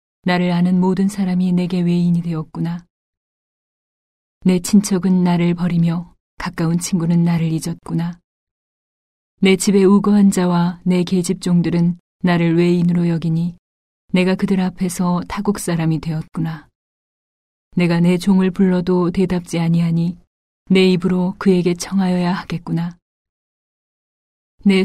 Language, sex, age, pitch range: Korean, female, 40-59, 170-185 Hz